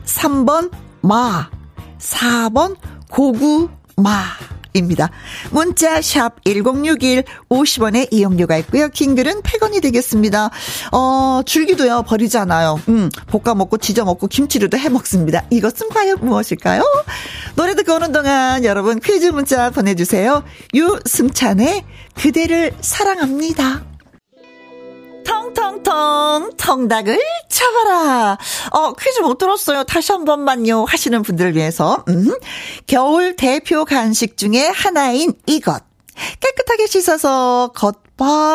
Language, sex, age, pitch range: Korean, female, 40-59, 220-325 Hz